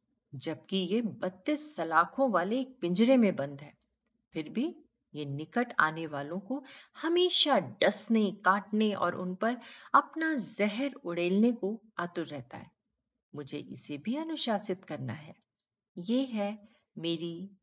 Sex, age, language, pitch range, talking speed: female, 50-69, Hindi, 170-260 Hz, 135 wpm